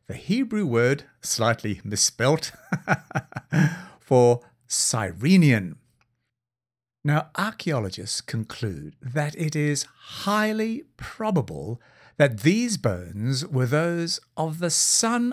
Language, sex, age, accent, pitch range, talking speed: English, male, 50-69, British, 115-165 Hz, 90 wpm